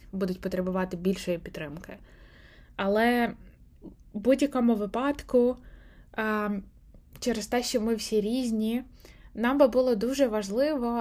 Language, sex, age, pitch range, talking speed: Ukrainian, female, 20-39, 185-225 Hz, 105 wpm